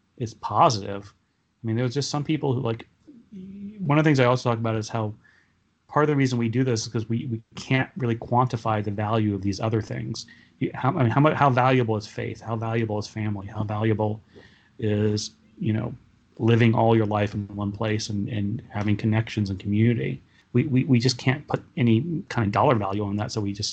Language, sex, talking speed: English, male, 220 wpm